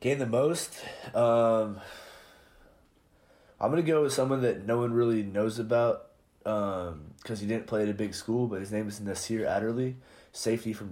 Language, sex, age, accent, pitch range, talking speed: English, male, 20-39, American, 100-115 Hz, 180 wpm